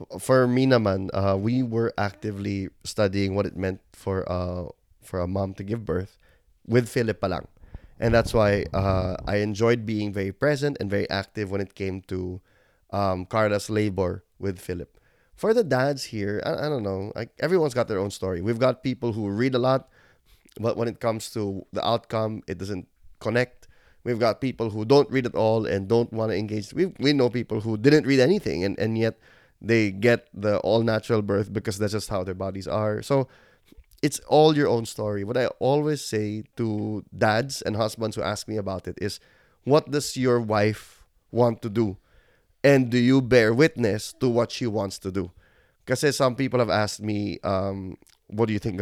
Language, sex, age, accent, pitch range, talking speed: English, male, 20-39, Filipino, 100-125 Hz, 195 wpm